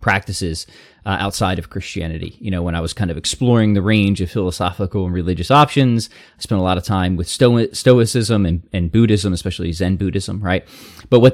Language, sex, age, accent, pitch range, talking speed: English, male, 20-39, American, 95-125 Hz, 195 wpm